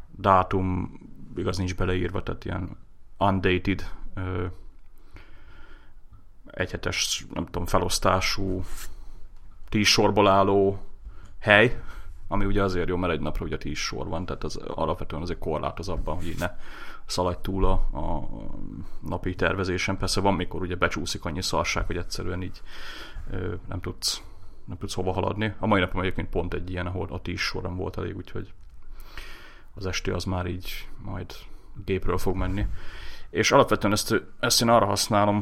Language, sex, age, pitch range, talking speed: Hungarian, male, 30-49, 90-100 Hz, 140 wpm